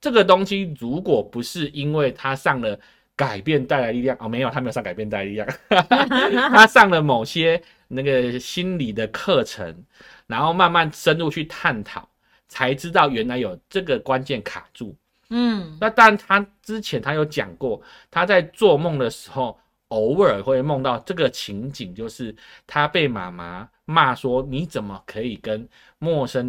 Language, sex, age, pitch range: Chinese, male, 30-49, 130-205 Hz